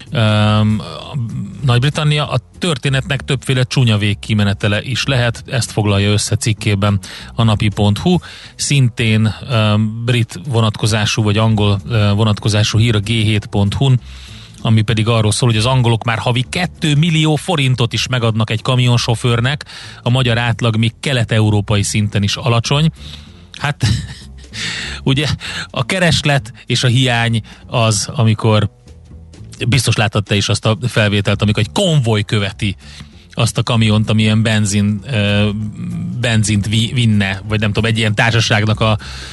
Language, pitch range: Hungarian, 105-125 Hz